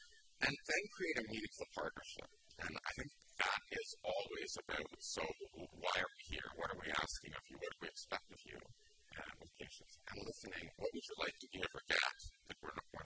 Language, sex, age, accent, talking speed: English, male, 50-69, American, 210 wpm